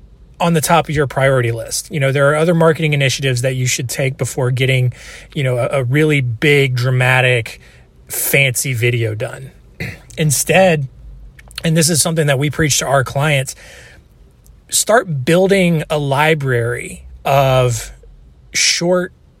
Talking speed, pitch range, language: 145 wpm, 130-165 Hz, English